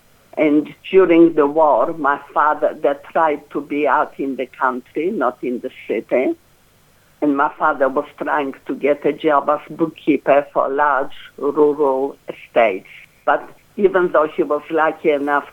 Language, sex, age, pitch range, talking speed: English, female, 60-79, 145-160 Hz, 155 wpm